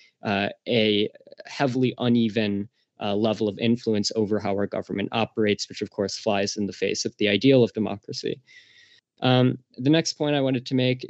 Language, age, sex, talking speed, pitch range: English, 20-39, male, 180 wpm, 110-125 Hz